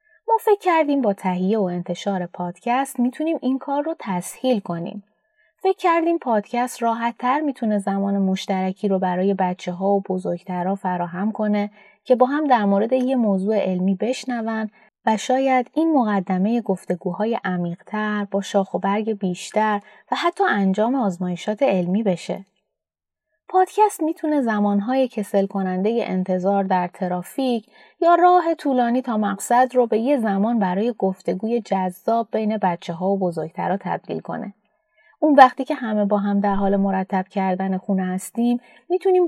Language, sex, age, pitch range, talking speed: Persian, female, 20-39, 190-255 Hz, 145 wpm